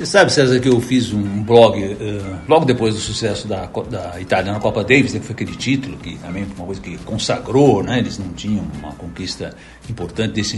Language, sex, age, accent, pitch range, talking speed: Portuguese, male, 60-79, Brazilian, 110-150 Hz, 215 wpm